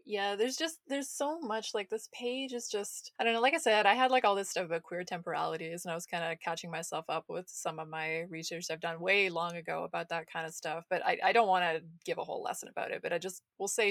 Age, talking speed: 20-39, 285 wpm